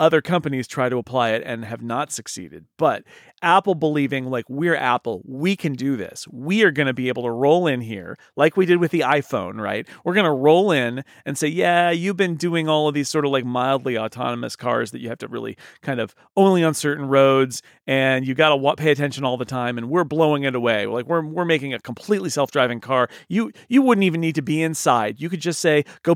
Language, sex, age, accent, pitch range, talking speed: English, male, 40-59, American, 135-175 Hz, 235 wpm